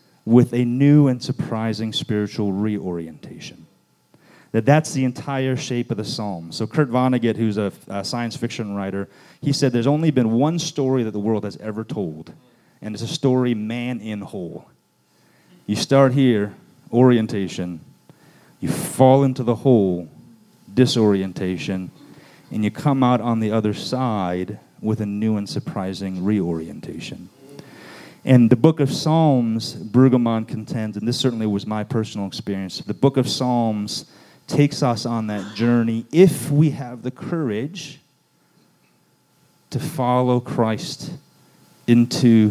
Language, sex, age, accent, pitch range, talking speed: English, male, 30-49, American, 100-130 Hz, 140 wpm